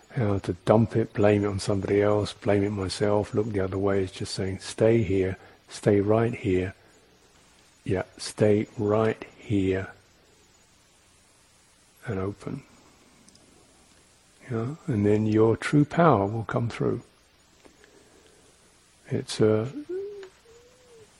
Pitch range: 100-120 Hz